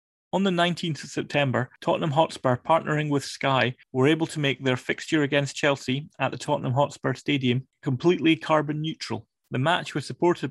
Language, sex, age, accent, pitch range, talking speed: English, male, 30-49, British, 120-145 Hz, 170 wpm